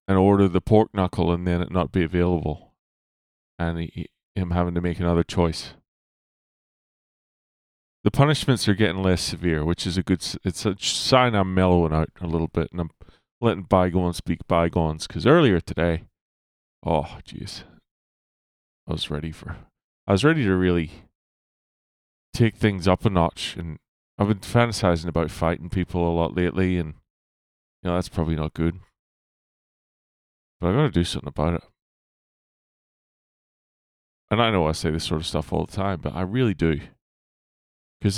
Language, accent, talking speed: English, American, 160 wpm